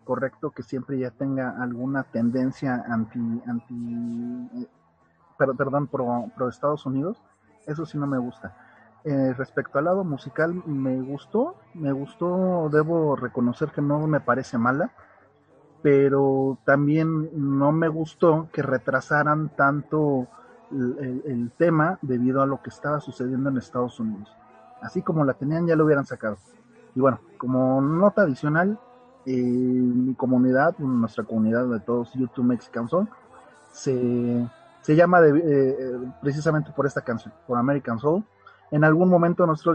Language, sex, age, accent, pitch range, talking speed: Spanish, male, 30-49, Mexican, 125-155 Hz, 145 wpm